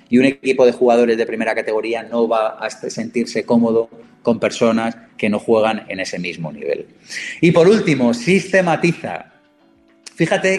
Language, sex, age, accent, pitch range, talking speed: Spanish, male, 30-49, Spanish, 115-145 Hz, 155 wpm